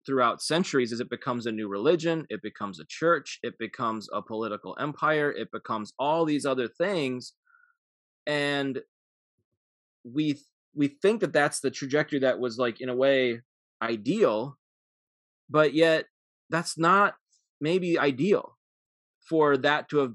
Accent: American